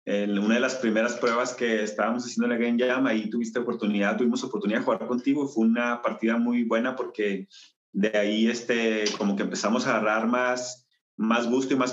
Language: Spanish